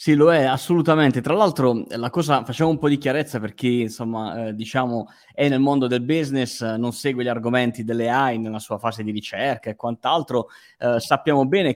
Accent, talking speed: native, 200 wpm